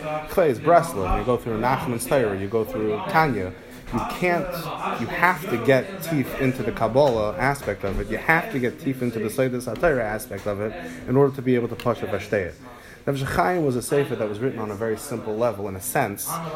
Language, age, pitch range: English, 20-39, 105-130 Hz